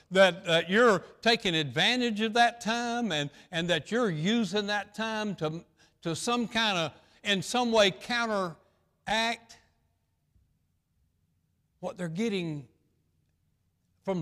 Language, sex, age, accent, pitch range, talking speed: English, male, 60-79, American, 120-195 Hz, 120 wpm